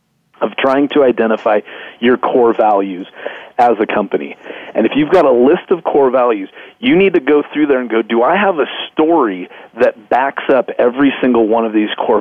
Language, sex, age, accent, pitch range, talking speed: English, male, 40-59, American, 115-140 Hz, 200 wpm